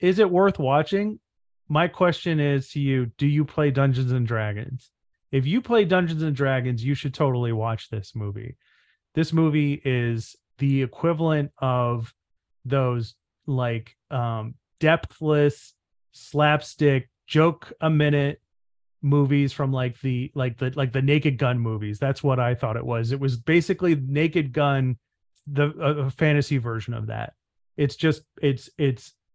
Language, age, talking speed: English, 30-49, 145 wpm